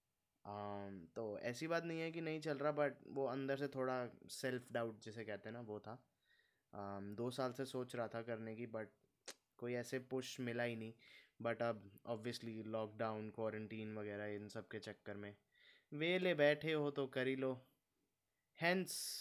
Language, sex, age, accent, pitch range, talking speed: Hindi, male, 20-39, native, 105-125 Hz, 170 wpm